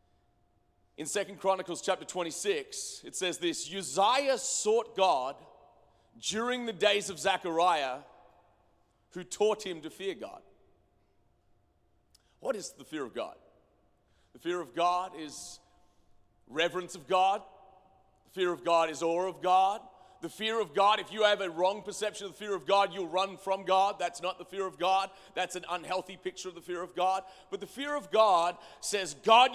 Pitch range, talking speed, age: 180-235 Hz, 175 wpm, 40-59